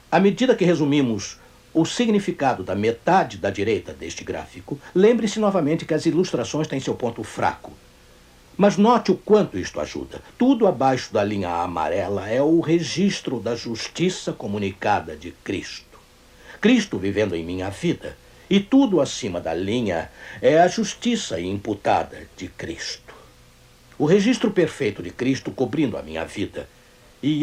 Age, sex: 60-79, male